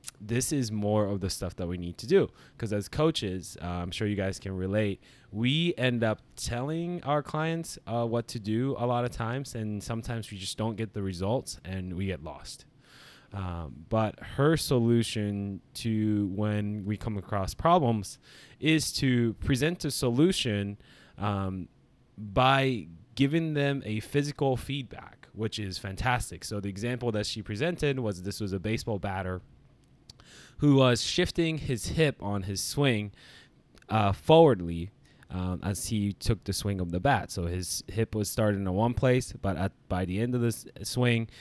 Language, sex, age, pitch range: English, male, 20-39, 100-130 Hz